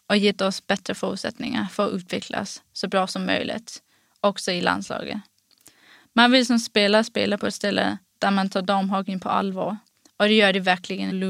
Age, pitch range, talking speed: 20-39, 195-220 Hz, 180 wpm